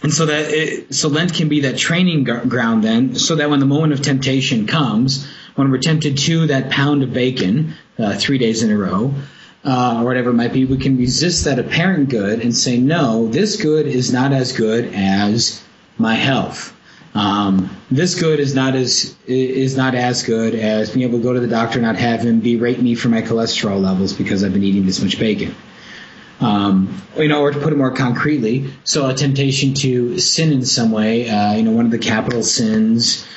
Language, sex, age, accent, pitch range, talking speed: English, male, 30-49, American, 115-145 Hz, 215 wpm